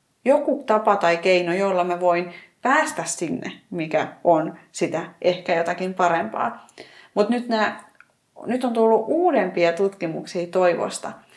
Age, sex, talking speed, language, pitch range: 30-49, female, 120 wpm, Finnish, 175-220 Hz